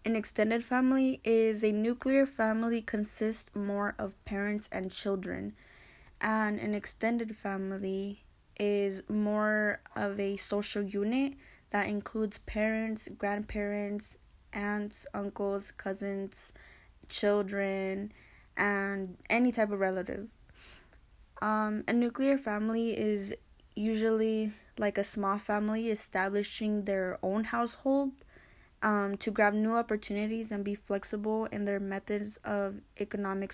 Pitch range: 200-220 Hz